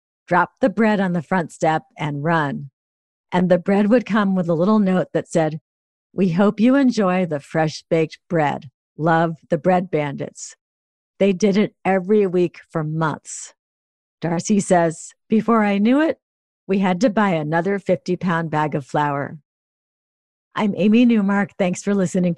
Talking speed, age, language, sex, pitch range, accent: 160 wpm, 50-69, English, female, 155-205 Hz, American